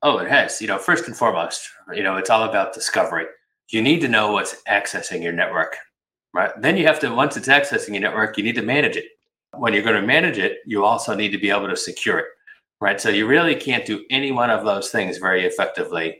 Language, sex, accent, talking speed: English, male, American, 240 wpm